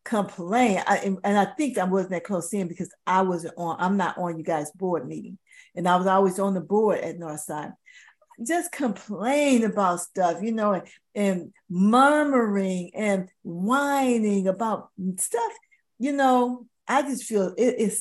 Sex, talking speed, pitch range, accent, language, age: female, 160 wpm, 185-235 Hz, American, English, 50-69